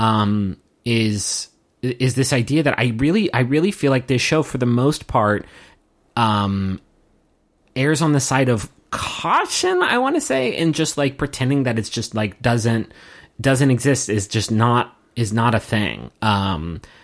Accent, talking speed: American, 170 wpm